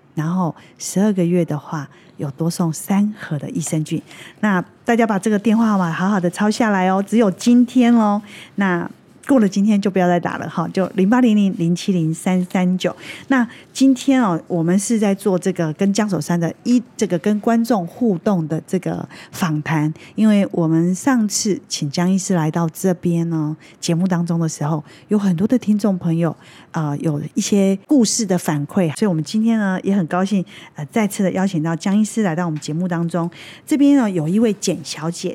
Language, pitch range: Chinese, 165-210 Hz